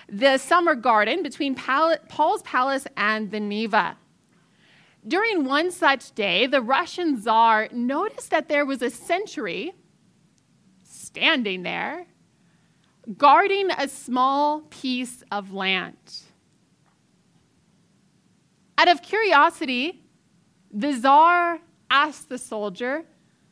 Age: 20-39